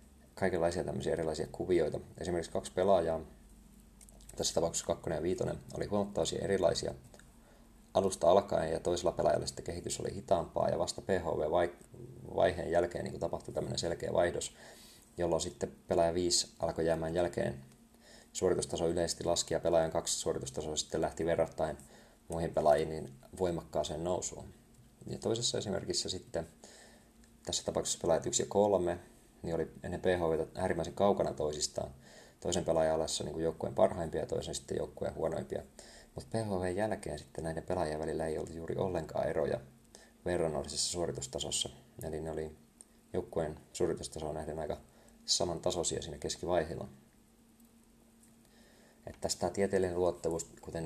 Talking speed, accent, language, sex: 130 wpm, native, Finnish, male